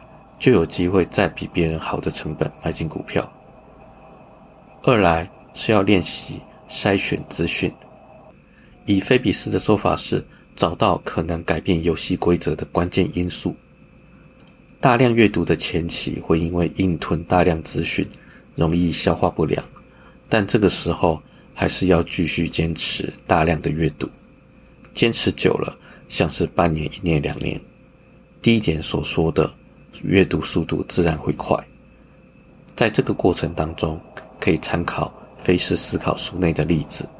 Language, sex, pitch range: Chinese, male, 80-100 Hz